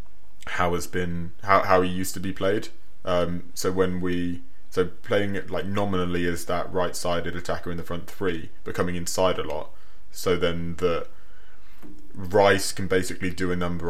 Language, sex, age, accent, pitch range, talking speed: English, male, 20-39, British, 85-90 Hz, 180 wpm